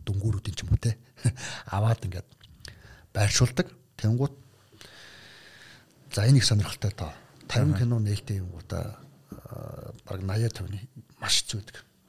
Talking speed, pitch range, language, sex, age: 85 wpm, 100-120 Hz, English, male, 60-79